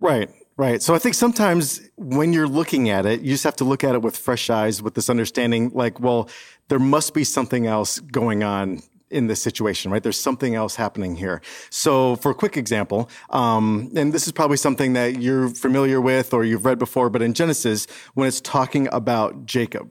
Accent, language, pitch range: American, English, 115-150 Hz